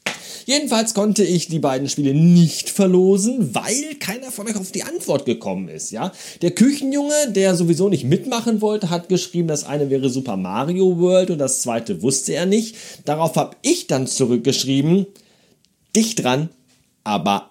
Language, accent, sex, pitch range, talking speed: German, German, male, 135-220 Hz, 160 wpm